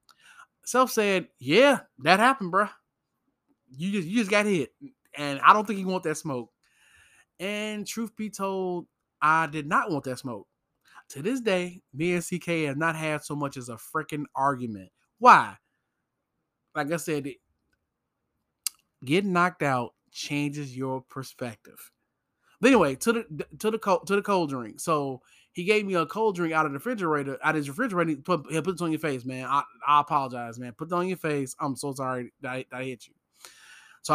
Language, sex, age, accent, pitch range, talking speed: English, male, 20-39, American, 140-195 Hz, 195 wpm